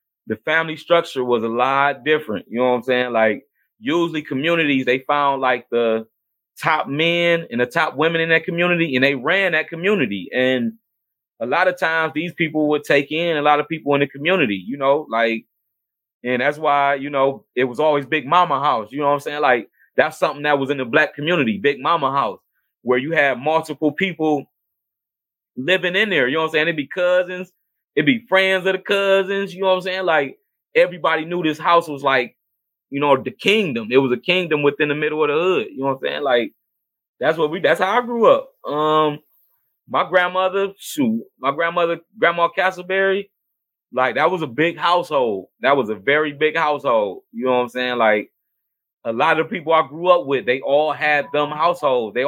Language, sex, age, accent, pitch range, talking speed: English, male, 20-39, American, 135-175 Hz, 210 wpm